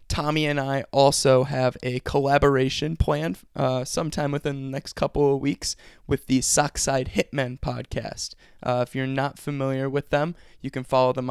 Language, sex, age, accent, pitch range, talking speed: English, male, 20-39, American, 120-135 Hz, 170 wpm